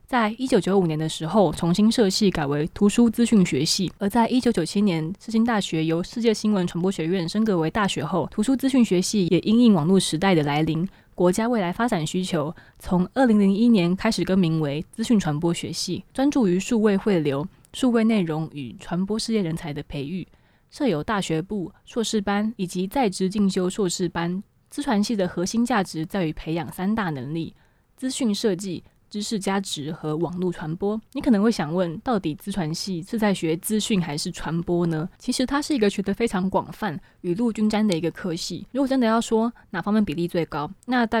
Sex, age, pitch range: female, 20-39, 170-220 Hz